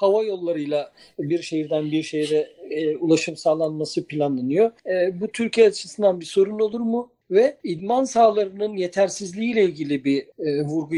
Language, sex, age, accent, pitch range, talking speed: Turkish, male, 50-69, native, 155-215 Hz, 140 wpm